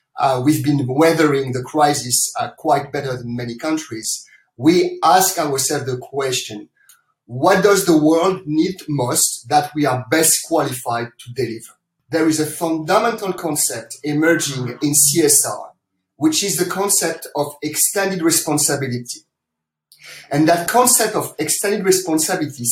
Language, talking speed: English, 135 wpm